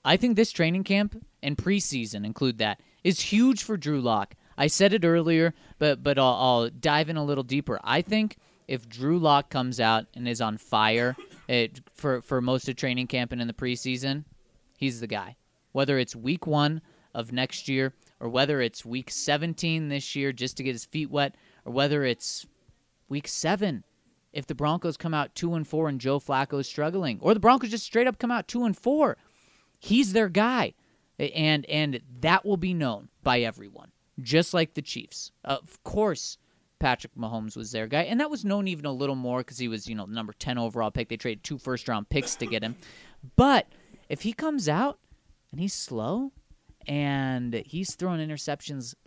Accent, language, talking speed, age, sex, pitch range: American, English, 195 wpm, 30-49, male, 125-185 Hz